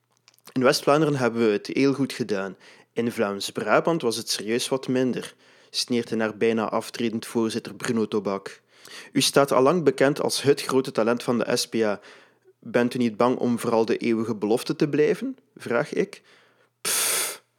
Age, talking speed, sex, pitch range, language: 30-49, 165 wpm, male, 110-130 Hz, Dutch